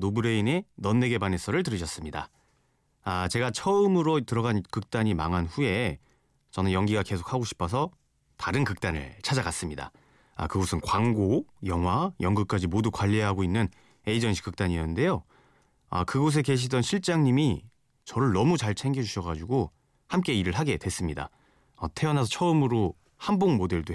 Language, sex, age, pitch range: Korean, male, 30-49, 95-130 Hz